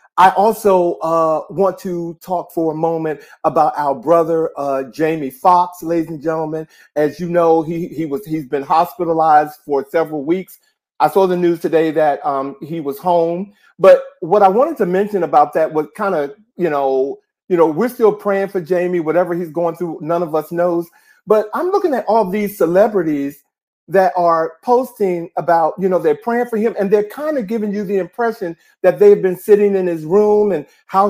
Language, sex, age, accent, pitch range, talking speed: English, male, 50-69, American, 170-215 Hz, 195 wpm